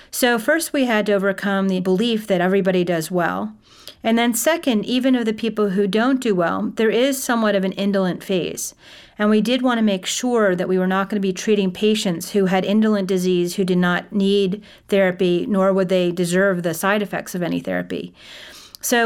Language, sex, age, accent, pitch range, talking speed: English, female, 40-59, American, 185-225 Hz, 210 wpm